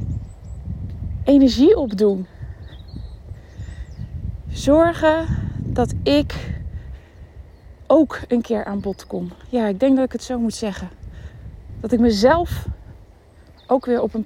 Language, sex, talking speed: Dutch, female, 115 wpm